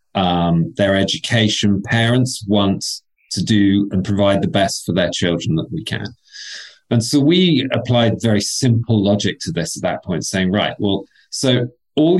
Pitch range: 100-125 Hz